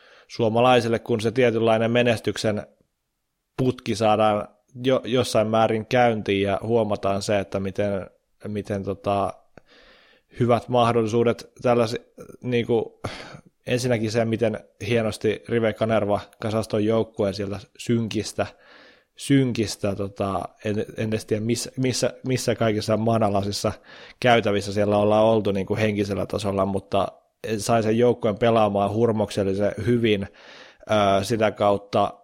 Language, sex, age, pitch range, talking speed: Finnish, male, 20-39, 100-120 Hz, 110 wpm